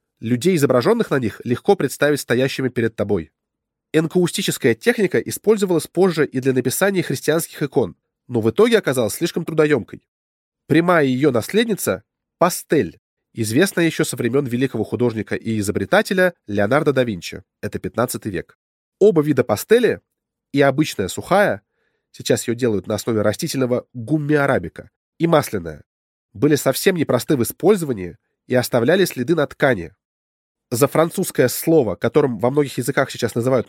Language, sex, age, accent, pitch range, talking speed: Russian, male, 20-39, native, 120-170 Hz, 135 wpm